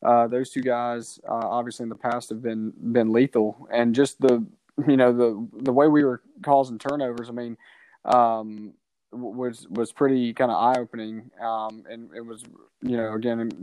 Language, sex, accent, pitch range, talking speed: English, male, American, 115-135 Hz, 185 wpm